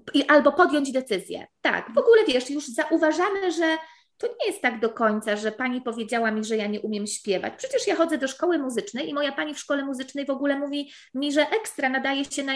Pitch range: 225-290 Hz